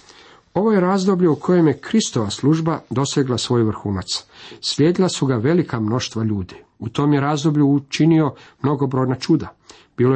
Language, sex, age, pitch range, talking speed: Croatian, male, 50-69, 115-140 Hz, 155 wpm